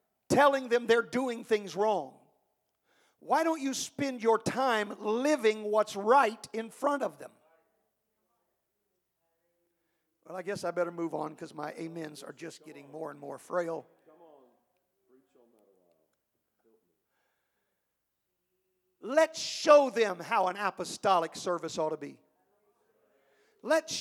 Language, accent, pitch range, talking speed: English, American, 180-250 Hz, 115 wpm